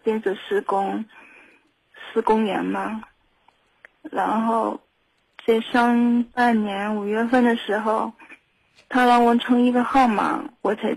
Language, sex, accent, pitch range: Chinese, female, native, 210-250 Hz